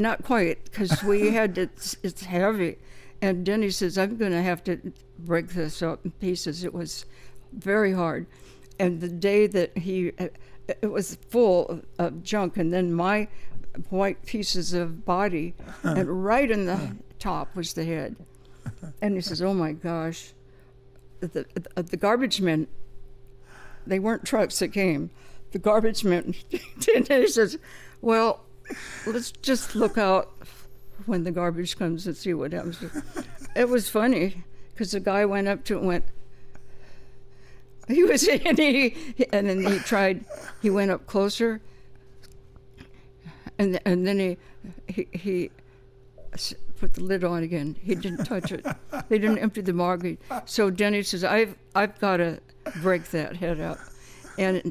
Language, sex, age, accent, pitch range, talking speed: English, female, 60-79, American, 155-205 Hz, 150 wpm